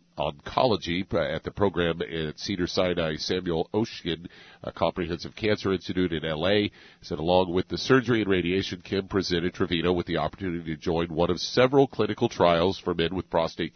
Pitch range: 85-110 Hz